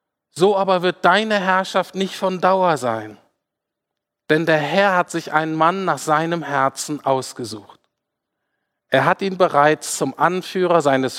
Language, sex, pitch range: German, male, 155-195 Hz